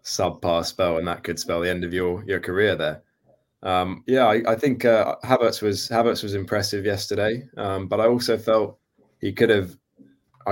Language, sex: English, male